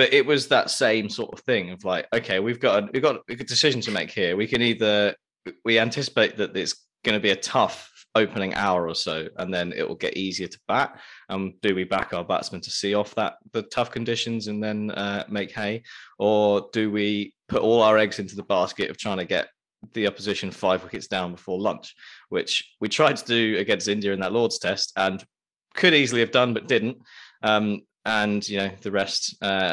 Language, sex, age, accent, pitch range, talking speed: English, male, 20-39, British, 95-115 Hz, 220 wpm